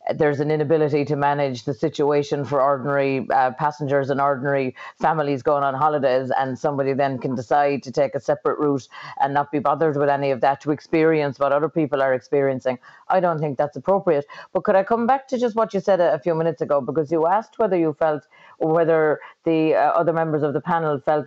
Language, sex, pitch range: English, female, 145-175 Hz